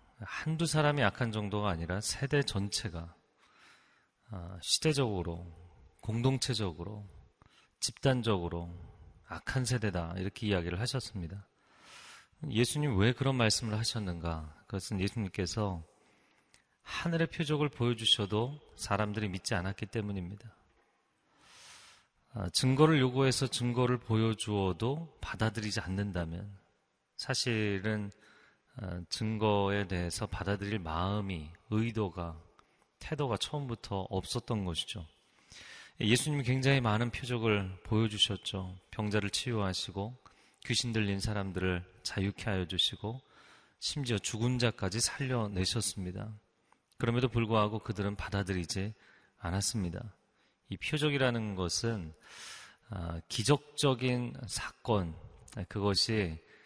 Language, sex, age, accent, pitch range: Korean, male, 30-49, native, 95-120 Hz